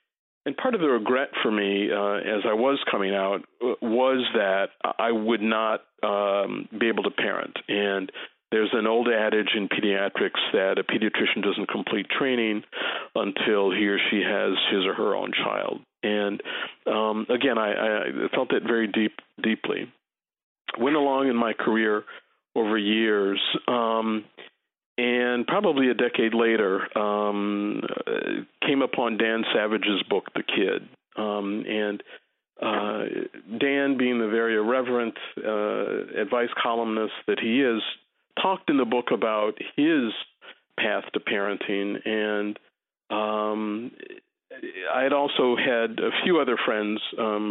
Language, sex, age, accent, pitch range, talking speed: English, male, 50-69, American, 105-120 Hz, 140 wpm